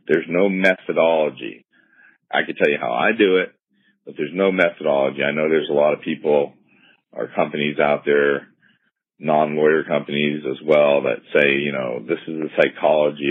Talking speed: 170 wpm